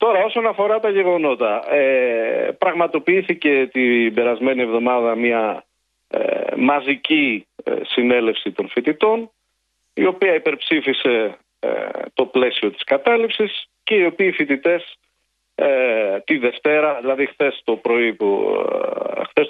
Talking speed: 110 wpm